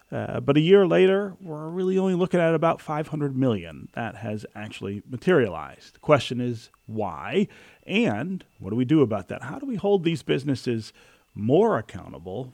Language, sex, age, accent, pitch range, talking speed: English, male, 40-59, American, 105-145 Hz, 170 wpm